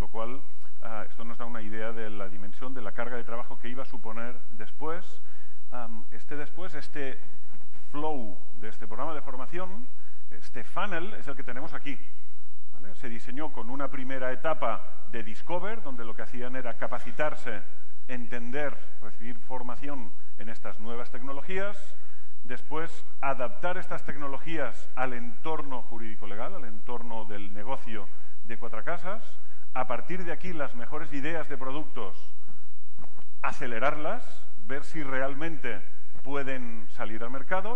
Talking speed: 145 wpm